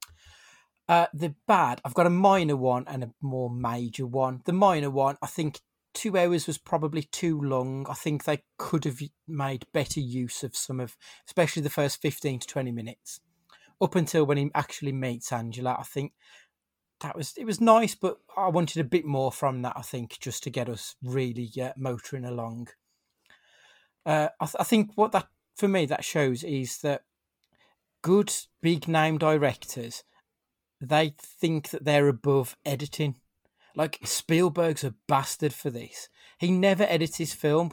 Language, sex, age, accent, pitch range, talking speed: English, male, 30-49, British, 130-165 Hz, 170 wpm